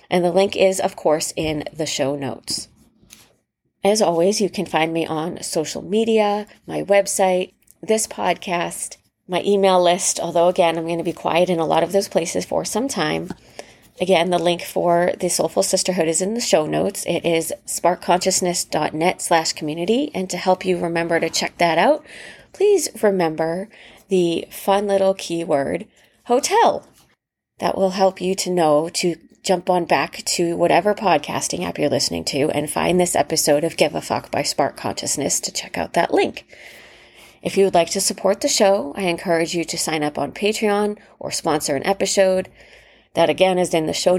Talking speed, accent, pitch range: 180 wpm, American, 165-195 Hz